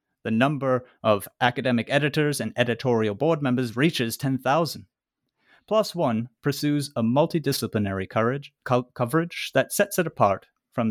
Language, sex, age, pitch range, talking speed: English, male, 30-49, 120-165 Hz, 120 wpm